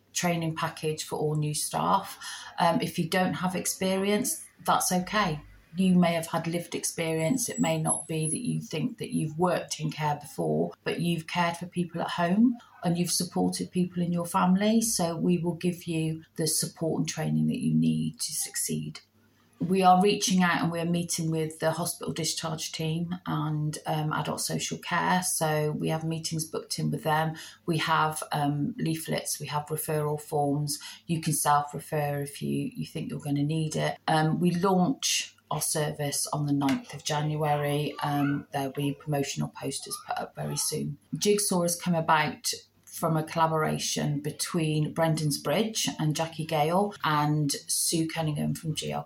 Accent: British